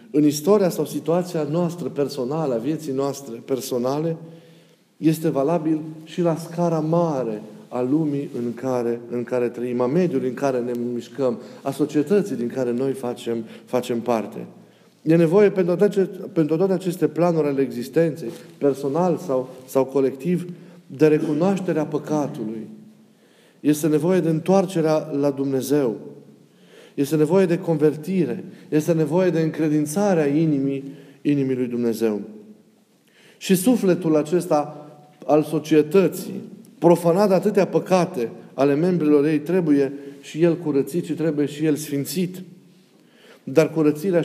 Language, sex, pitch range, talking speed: Romanian, male, 135-175 Hz, 125 wpm